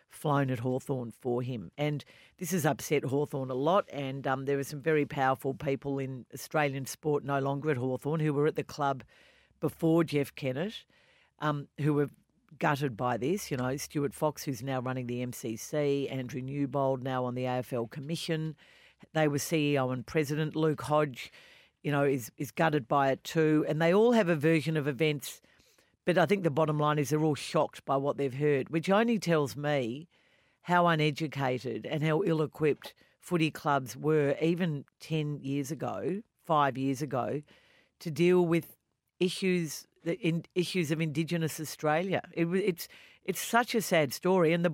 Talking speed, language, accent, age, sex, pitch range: 175 wpm, English, Australian, 50-69, female, 135-165 Hz